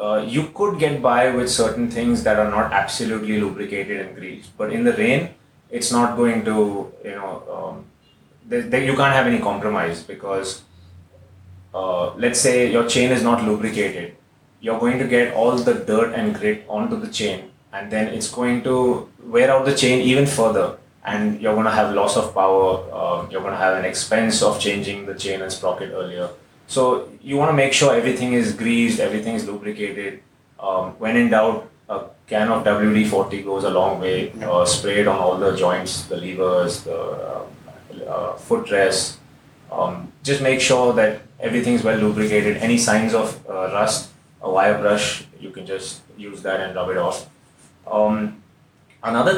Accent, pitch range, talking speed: Indian, 100-125 Hz, 185 wpm